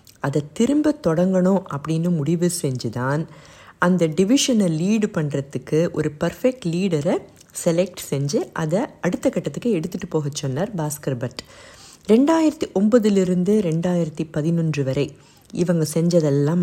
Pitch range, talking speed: 150-200 Hz, 110 wpm